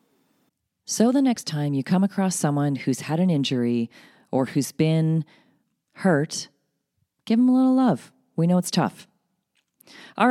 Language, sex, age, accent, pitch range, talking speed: English, female, 40-59, American, 160-220 Hz, 150 wpm